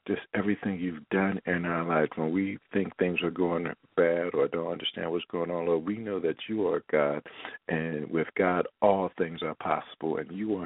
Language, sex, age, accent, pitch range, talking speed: English, male, 50-69, American, 80-90 Hz, 210 wpm